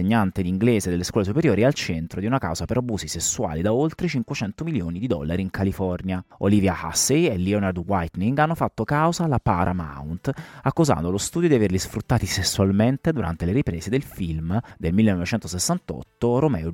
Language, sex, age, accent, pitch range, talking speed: Italian, male, 30-49, native, 90-120 Hz, 165 wpm